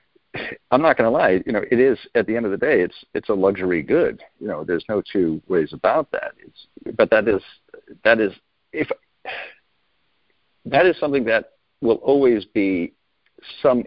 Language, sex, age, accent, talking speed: English, male, 50-69, American, 185 wpm